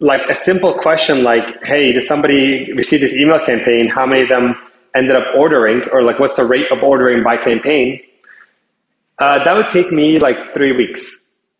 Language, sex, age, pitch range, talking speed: English, male, 30-49, 135-205 Hz, 185 wpm